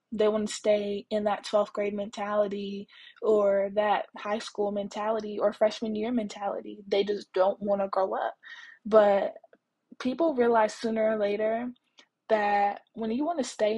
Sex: female